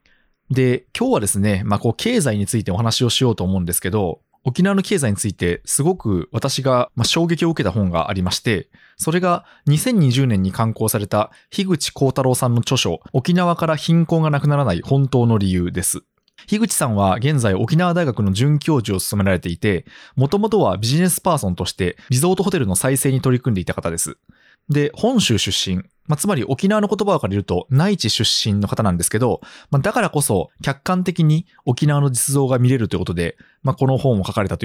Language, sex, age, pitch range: Japanese, male, 20-39, 100-155 Hz